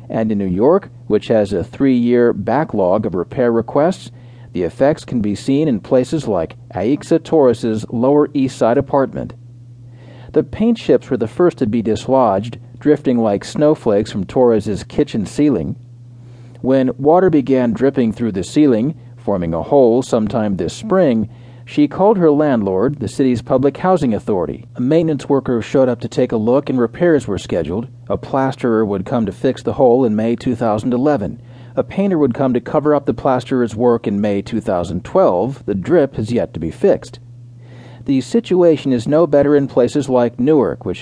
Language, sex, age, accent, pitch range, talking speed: English, male, 40-59, American, 115-140 Hz, 175 wpm